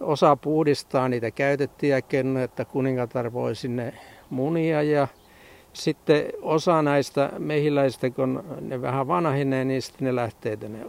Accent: native